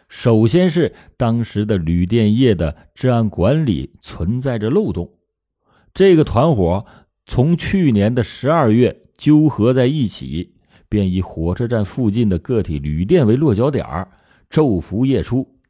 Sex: male